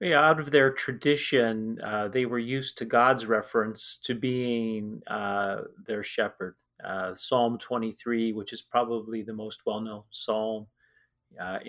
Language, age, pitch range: English, 30-49, 105-125 Hz